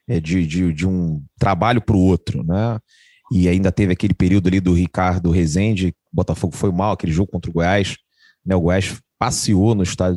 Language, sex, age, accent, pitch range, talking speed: Portuguese, male, 30-49, Brazilian, 100-140 Hz, 175 wpm